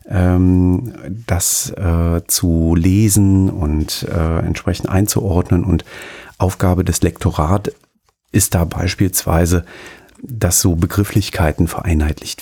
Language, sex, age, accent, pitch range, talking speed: German, male, 40-59, German, 85-100 Hz, 90 wpm